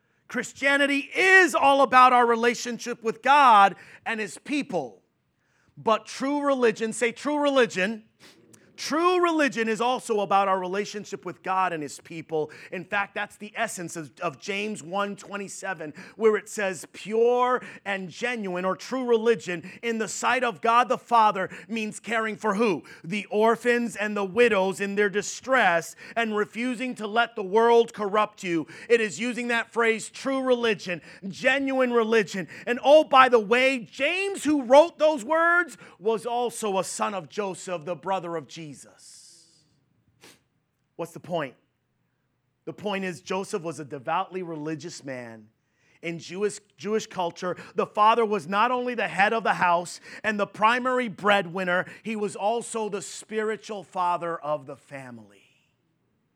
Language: English